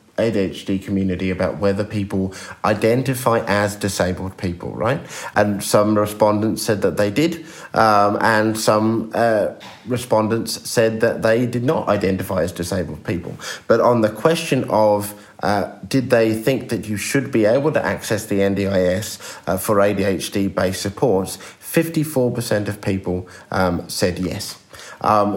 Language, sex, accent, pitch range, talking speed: English, male, British, 95-115 Hz, 140 wpm